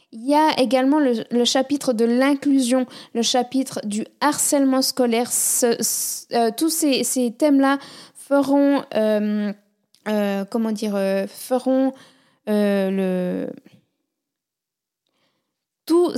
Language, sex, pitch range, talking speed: French, female, 220-265 Hz, 110 wpm